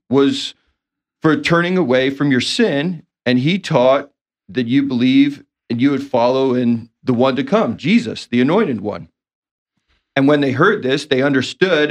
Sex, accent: male, American